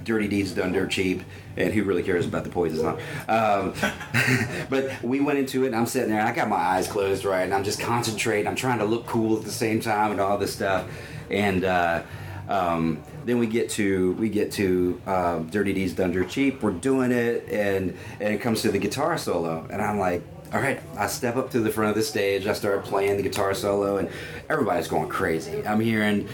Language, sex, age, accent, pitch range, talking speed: English, male, 30-49, American, 95-120 Hz, 230 wpm